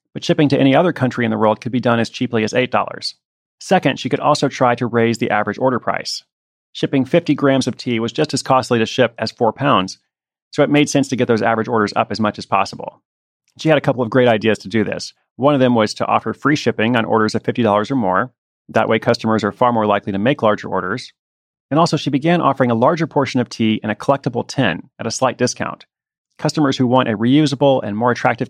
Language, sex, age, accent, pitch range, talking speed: English, male, 30-49, American, 115-140 Hz, 245 wpm